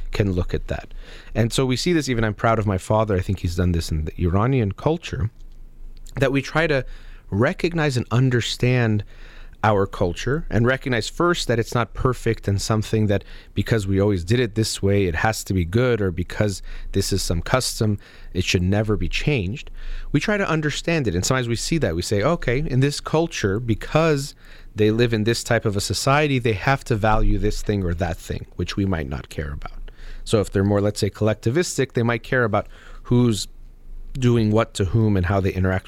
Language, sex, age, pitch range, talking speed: English, male, 30-49, 100-125 Hz, 210 wpm